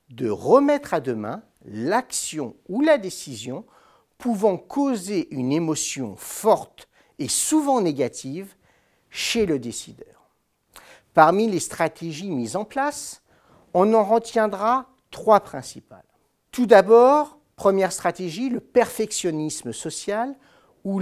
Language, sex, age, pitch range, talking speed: French, male, 50-69, 155-235 Hz, 110 wpm